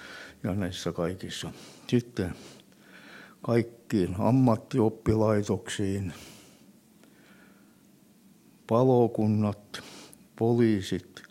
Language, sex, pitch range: Finnish, male, 95-110 Hz